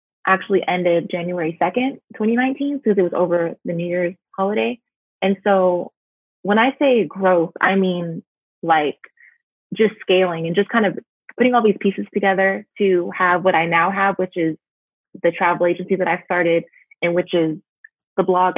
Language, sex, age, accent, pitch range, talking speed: English, female, 20-39, American, 175-200 Hz, 170 wpm